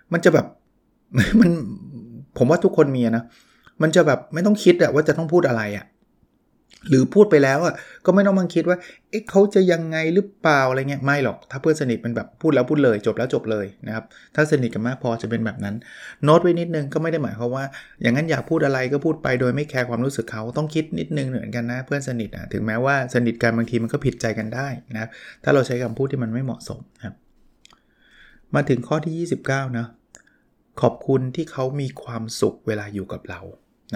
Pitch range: 115-150 Hz